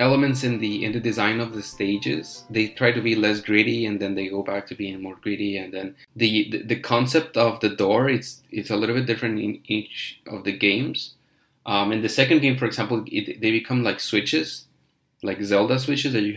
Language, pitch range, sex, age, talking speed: English, 100-120 Hz, male, 20-39, 225 wpm